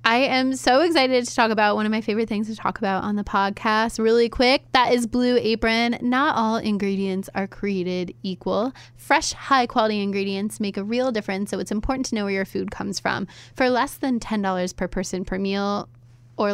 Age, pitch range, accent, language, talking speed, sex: 10-29, 195-230 Hz, American, English, 205 wpm, female